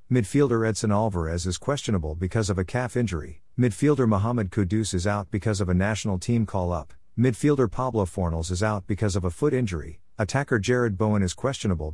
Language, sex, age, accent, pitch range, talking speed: English, male, 50-69, American, 90-115 Hz, 180 wpm